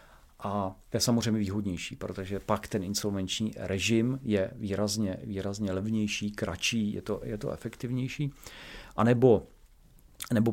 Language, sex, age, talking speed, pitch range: Czech, male, 40-59, 125 wpm, 100-115 Hz